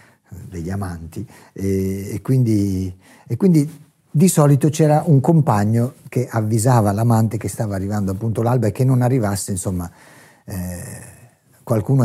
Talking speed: 125 wpm